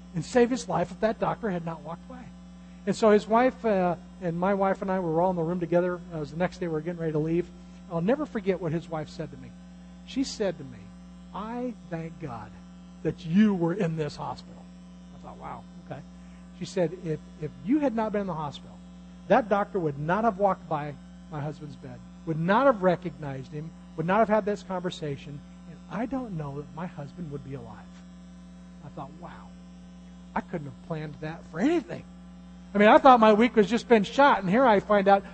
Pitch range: 170-210 Hz